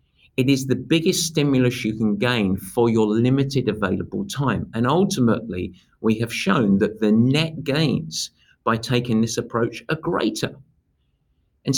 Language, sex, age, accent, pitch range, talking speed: English, male, 50-69, British, 105-135 Hz, 150 wpm